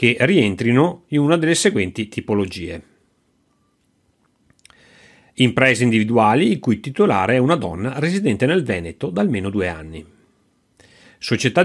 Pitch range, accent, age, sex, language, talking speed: 105-150 Hz, native, 40-59, male, Italian, 120 wpm